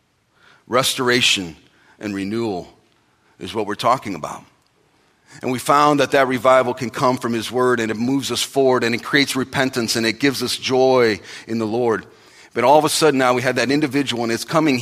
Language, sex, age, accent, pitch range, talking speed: English, male, 40-59, American, 110-135 Hz, 200 wpm